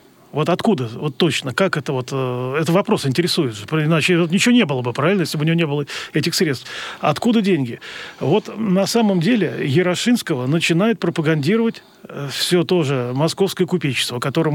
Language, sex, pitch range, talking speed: Russian, male, 145-195 Hz, 170 wpm